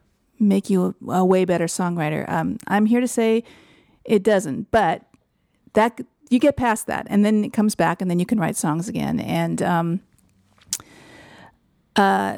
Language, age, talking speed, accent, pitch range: English, 40-59, 170 wpm, American, 175-225 Hz